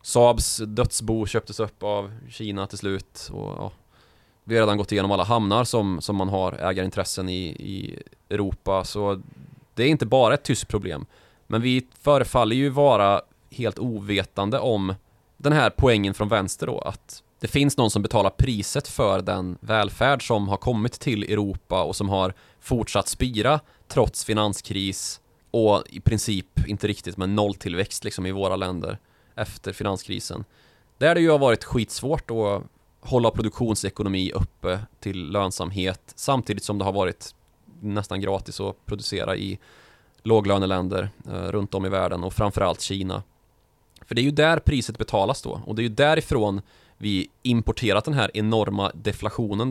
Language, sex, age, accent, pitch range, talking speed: Swedish, male, 20-39, native, 95-120 Hz, 160 wpm